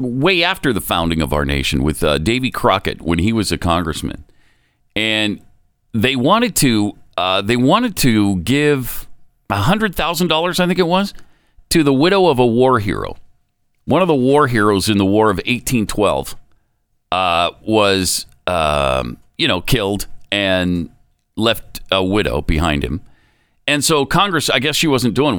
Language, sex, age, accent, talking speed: English, male, 50-69, American, 160 wpm